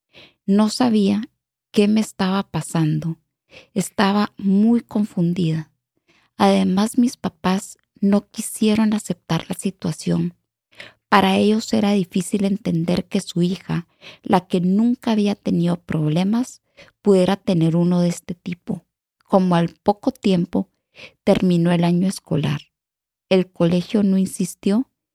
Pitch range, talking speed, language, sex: 175-210 Hz, 115 wpm, English, female